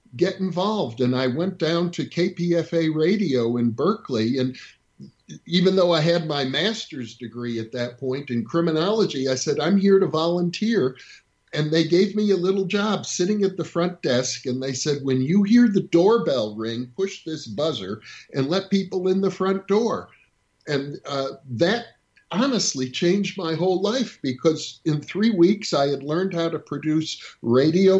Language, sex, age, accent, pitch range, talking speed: English, male, 50-69, American, 135-190 Hz, 170 wpm